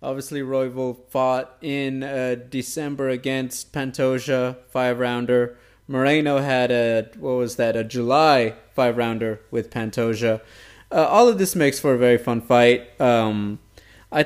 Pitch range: 125-155 Hz